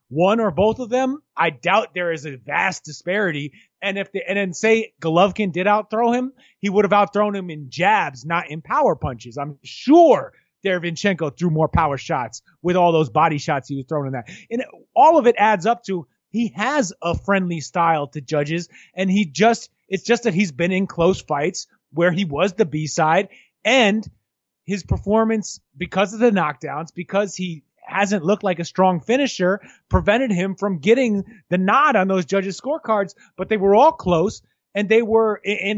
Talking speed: 190 wpm